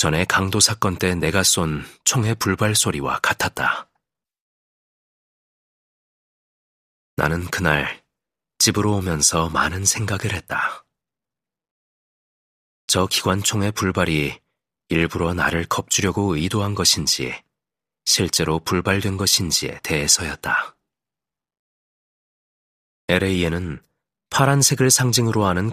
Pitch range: 85-105 Hz